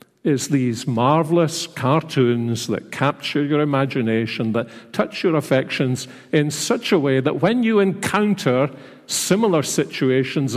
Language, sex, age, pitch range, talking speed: English, male, 50-69, 120-150 Hz, 125 wpm